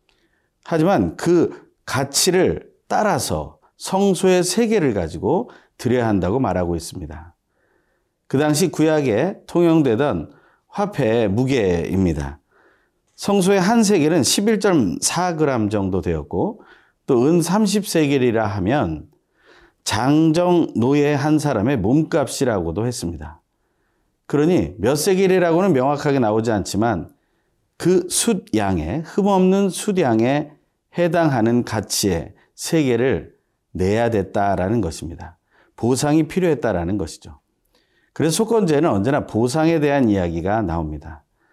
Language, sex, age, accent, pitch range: Korean, male, 40-59, native, 105-180 Hz